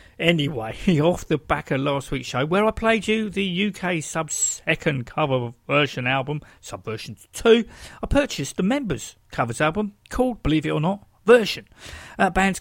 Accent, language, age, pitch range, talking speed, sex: British, English, 50-69, 140-195 Hz, 160 wpm, male